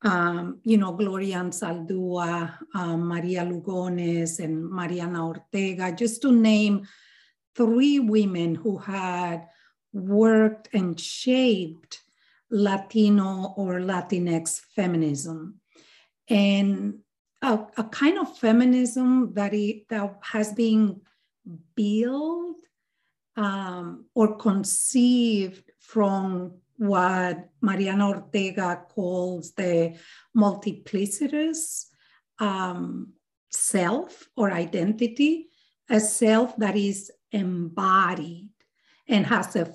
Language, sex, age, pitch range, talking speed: English, female, 40-59, 180-225 Hz, 85 wpm